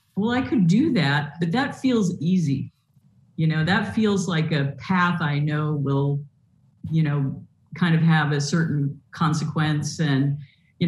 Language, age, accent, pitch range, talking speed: English, 50-69, American, 145-180 Hz, 160 wpm